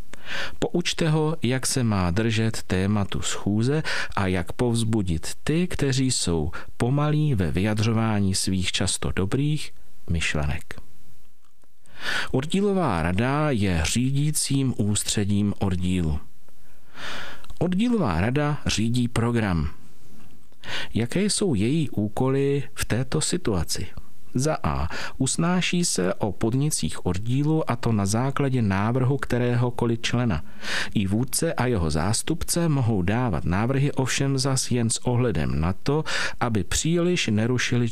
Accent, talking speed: native, 110 wpm